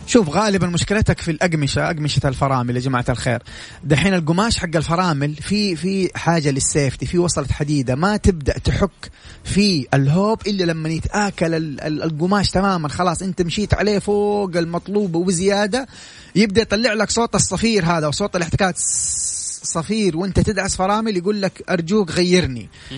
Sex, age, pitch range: male, 30-49, 150-200 Hz